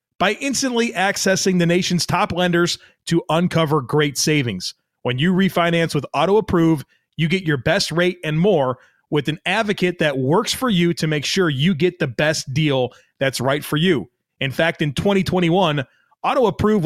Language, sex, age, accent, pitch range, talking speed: English, male, 30-49, American, 150-190 Hz, 165 wpm